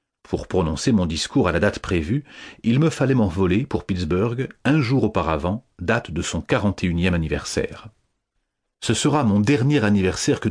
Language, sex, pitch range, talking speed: French, male, 90-125 Hz, 160 wpm